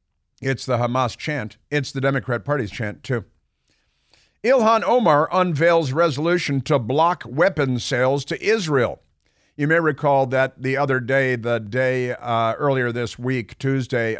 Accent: American